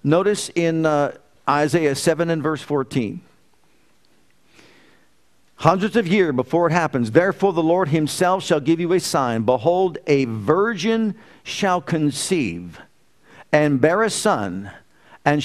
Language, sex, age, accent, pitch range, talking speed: English, male, 50-69, American, 130-170 Hz, 130 wpm